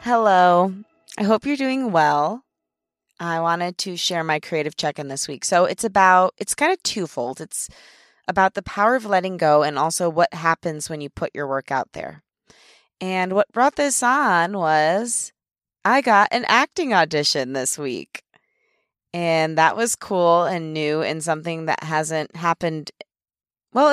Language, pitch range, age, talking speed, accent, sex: English, 150-195 Hz, 20-39, 165 wpm, American, female